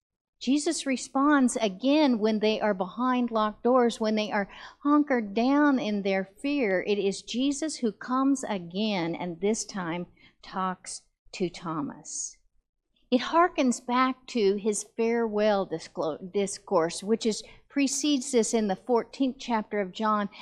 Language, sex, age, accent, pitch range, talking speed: English, female, 50-69, American, 210-265 Hz, 130 wpm